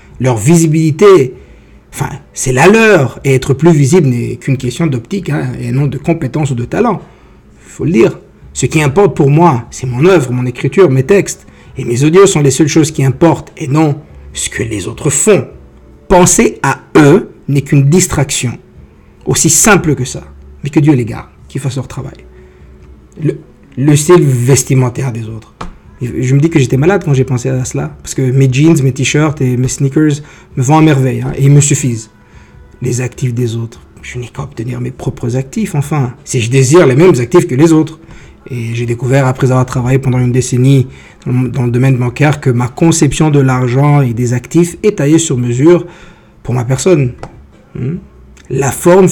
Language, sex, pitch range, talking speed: English, male, 125-155 Hz, 195 wpm